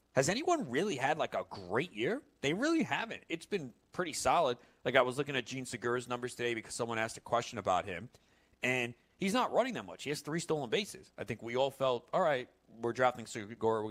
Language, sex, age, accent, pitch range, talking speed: English, male, 30-49, American, 100-135 Hz, 230 wpm